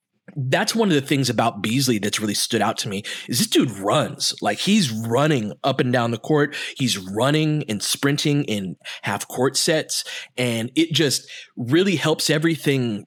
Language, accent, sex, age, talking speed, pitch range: English, American, male, 20-39, 175 wpm, 120-150 Hz